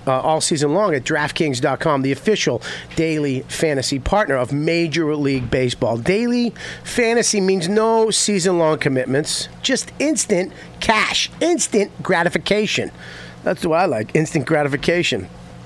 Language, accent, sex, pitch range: English, American, male, 140-200 Hz